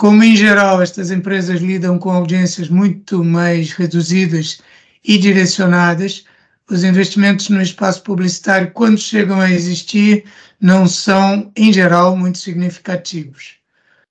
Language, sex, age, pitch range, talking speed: Portuguese, male, 60-79, 175-200 Hz, 120 wpm